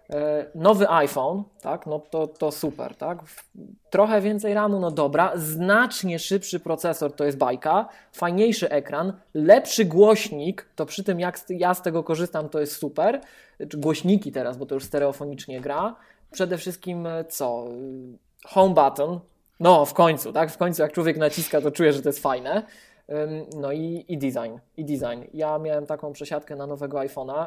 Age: 20-39